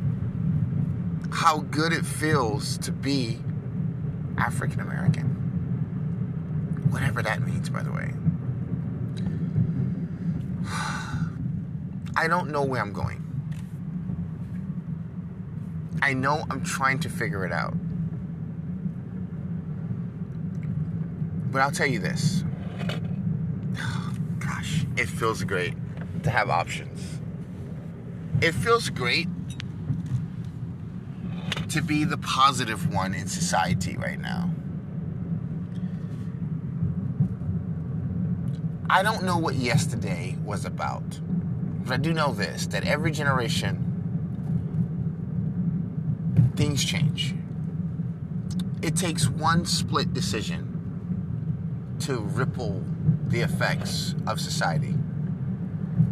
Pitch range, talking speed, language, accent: 150-165 Hz, 85 wpm, English, American